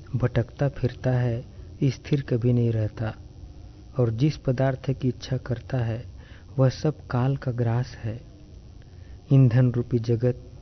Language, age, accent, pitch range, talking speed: English, 40-59, Indian, 105-130 Hz, 130 wpm